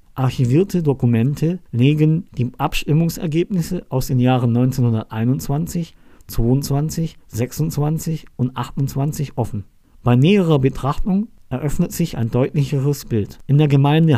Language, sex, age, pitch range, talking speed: German, male, 50-69, 120-155 Hz, 105 wpm